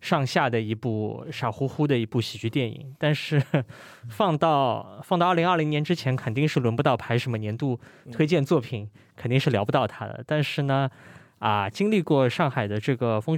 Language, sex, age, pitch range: Chinese, male, 20-39, 120-150 Hz